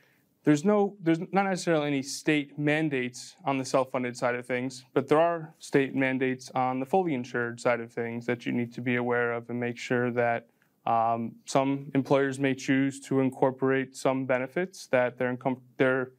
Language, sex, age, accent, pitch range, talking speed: English, male, 20-39, American, 125-145 Hz, 180 wpm